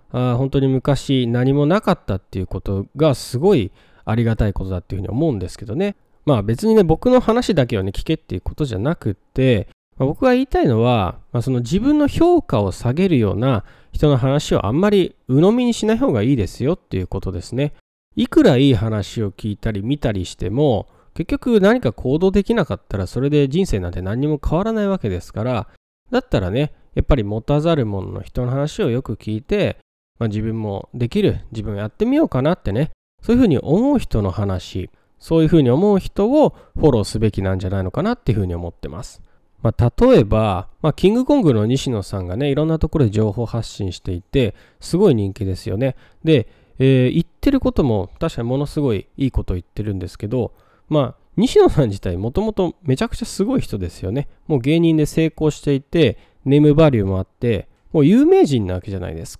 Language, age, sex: Japanese, 20-39, male